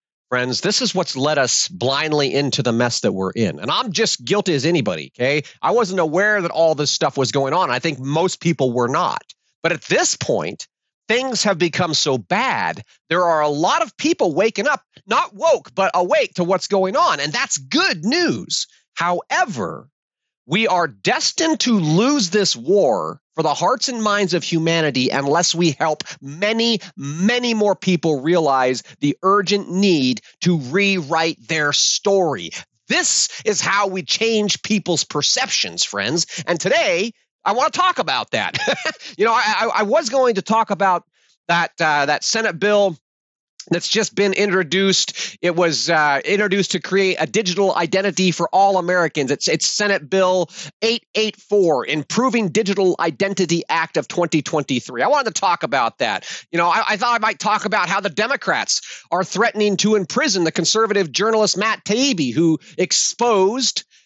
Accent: American